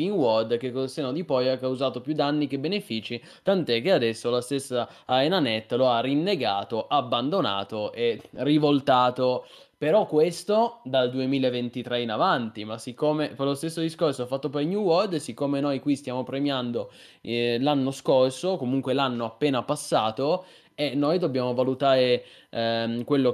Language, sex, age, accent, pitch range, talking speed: Italian, male, 20-39, native, 130-150 Hz, 155 wpm